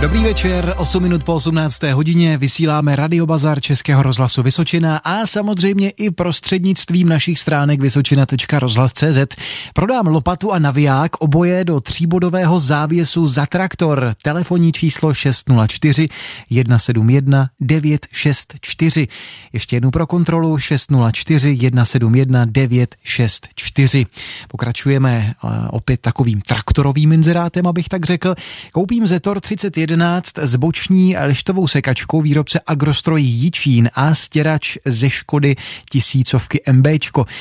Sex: male